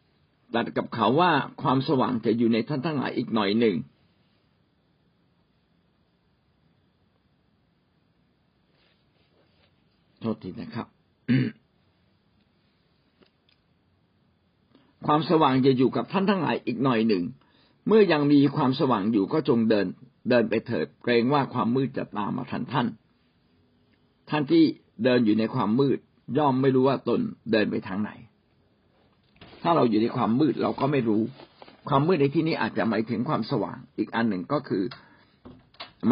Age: 60-79